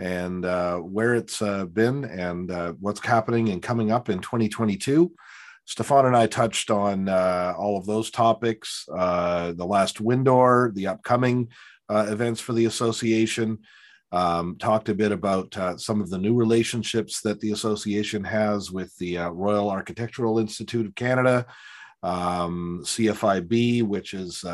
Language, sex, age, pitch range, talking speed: English, male, 40-59, 95-115 Hz, 155 wpm